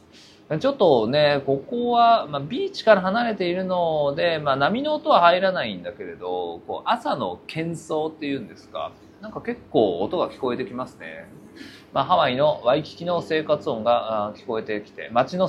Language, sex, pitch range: Japanese, male, 110-185 Hz